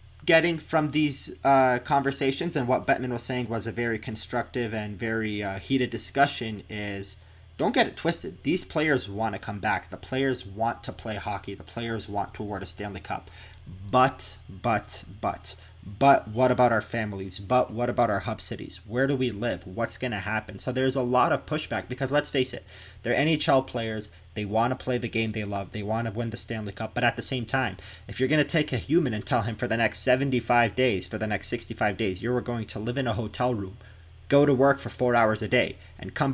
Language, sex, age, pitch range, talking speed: English, male, 30-49, 105-130 Hz, 225 wpm